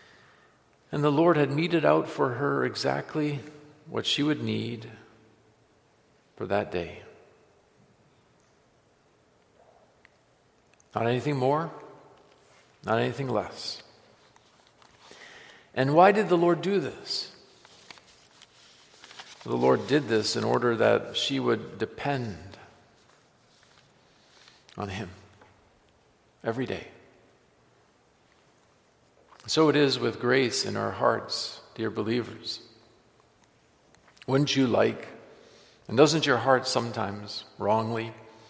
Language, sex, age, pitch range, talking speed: English, male, 50-69, 110-155 Hz, 95 wpm